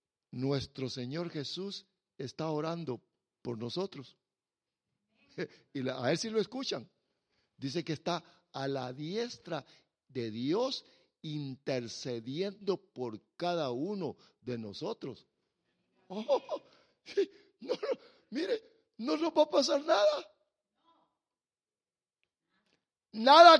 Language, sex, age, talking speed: English, male, 50-69, 100 wpm